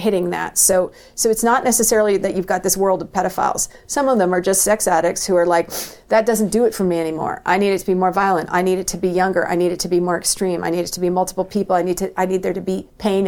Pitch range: 170-190 Hz